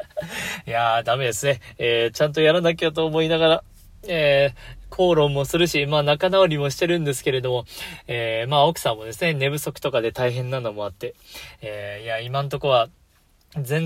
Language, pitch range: Japanese, 125-175 Hz